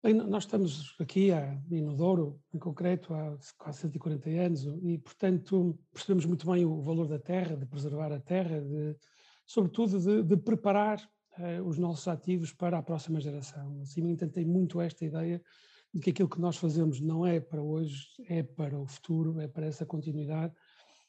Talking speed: 175 wpm